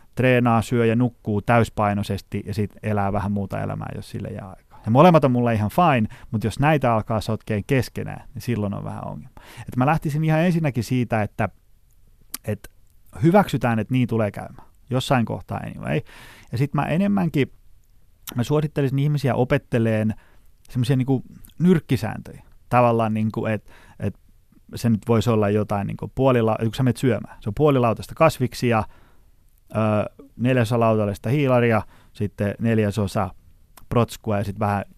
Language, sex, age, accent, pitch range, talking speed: Finnish, male, 30-49, native, 105-125 Hz, 155 wpm